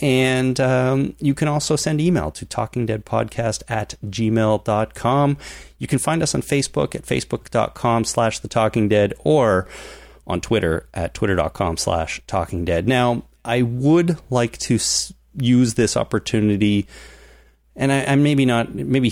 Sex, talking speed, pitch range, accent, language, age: male, 140 wpm, 95-120 Hz, American, English, 30-49